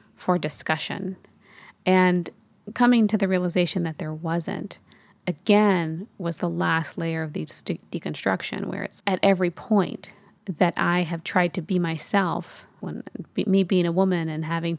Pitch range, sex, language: 170-195 Hz, female, English